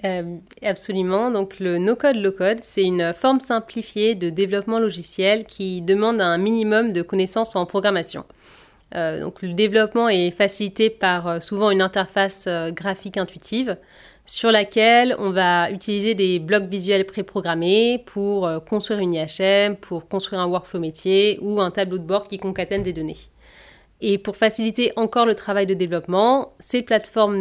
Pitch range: 180-215 Hz